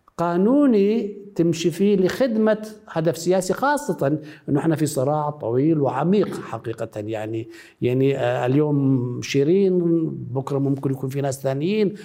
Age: 60-79